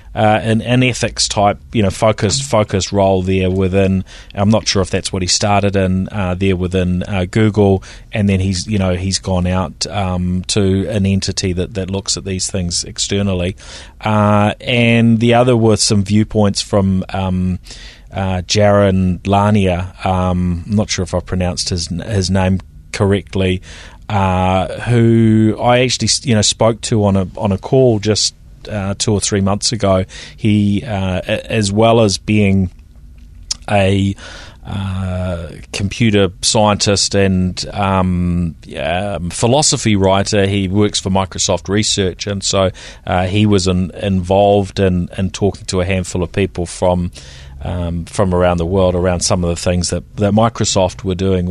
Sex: male